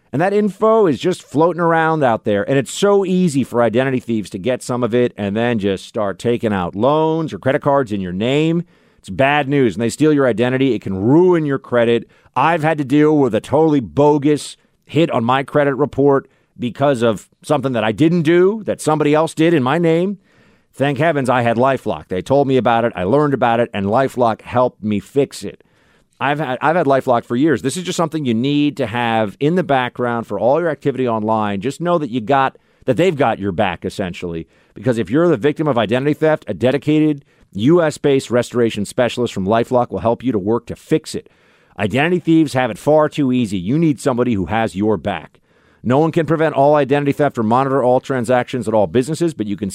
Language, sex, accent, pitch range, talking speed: English, male, American, 115-150 Hz, 220 wpm